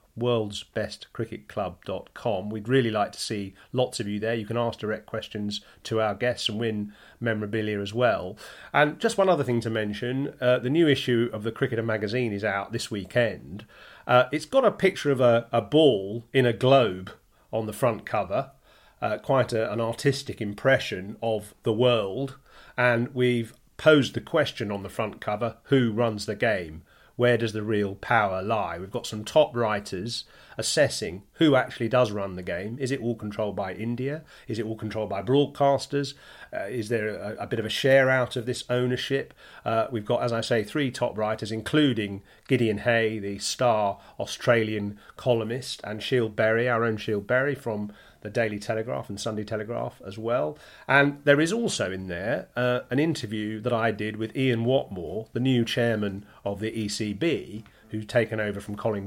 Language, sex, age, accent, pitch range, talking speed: English, male, 40-59, British, 105-125 Hz, 180 wpm